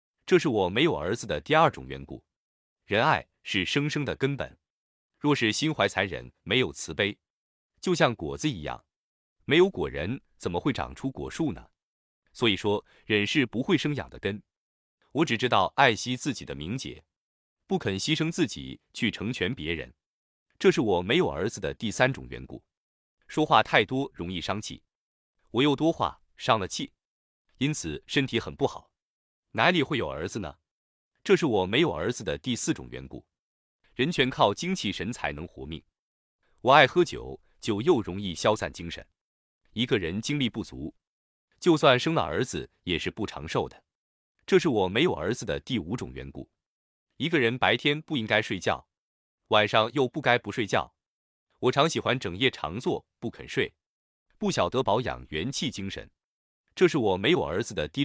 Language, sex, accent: Chinese, male, native